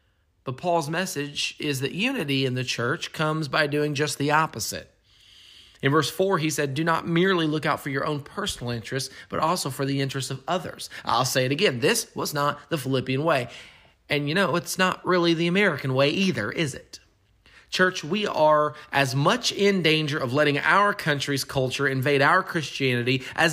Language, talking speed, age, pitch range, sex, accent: English, 190 wpm, 30-49, 140-200 Hz, male, American